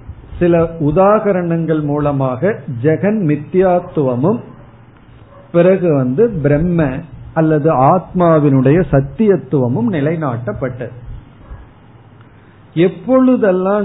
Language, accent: Tamil, native